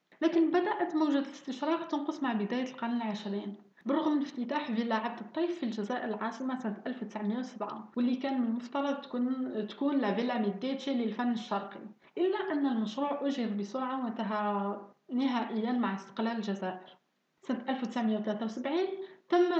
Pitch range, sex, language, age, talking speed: 215-275 Hz, female, Arabic, 30-49, 130 wpm